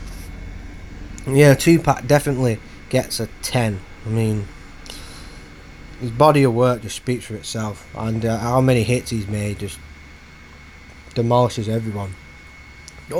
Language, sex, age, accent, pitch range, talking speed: English, male, 20-39, British, 105-135 Hz, 125 wpm